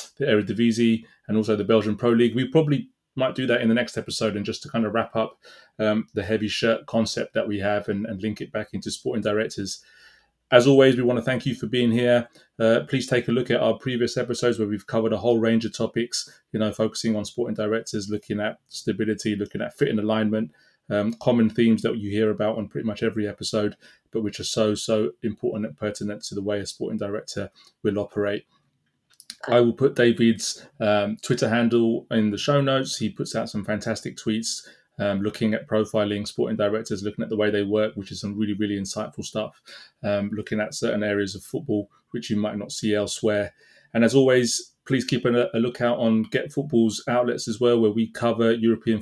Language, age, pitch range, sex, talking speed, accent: English, 20-39, 105-120 Hz, male, 215 wpm, British